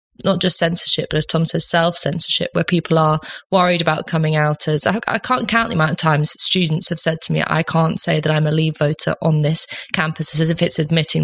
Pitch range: 160-185 Hz